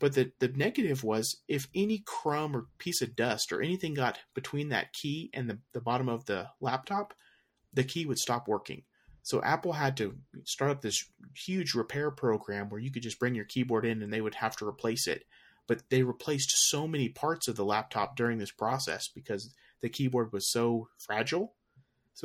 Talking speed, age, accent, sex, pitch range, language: 200 wpm, 30-49, American, male, 120-145 Hz, English